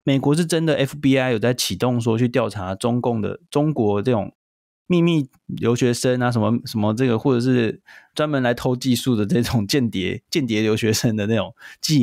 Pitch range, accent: 115-150 Hz, native